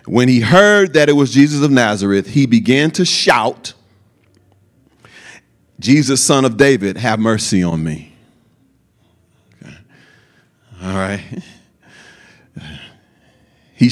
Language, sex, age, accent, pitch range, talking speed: English, male, 40-59, American, 110-185 Hz, 105 wpm